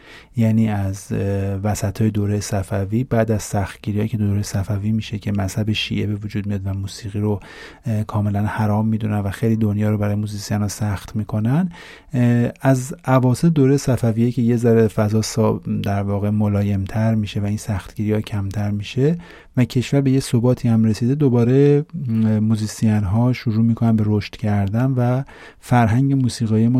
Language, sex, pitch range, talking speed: Persian, male, 105-120 Hz, 160 wpm